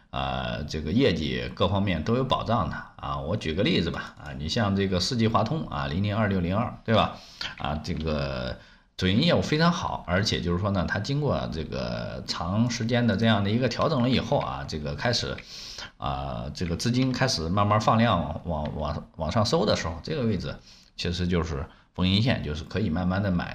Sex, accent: male, native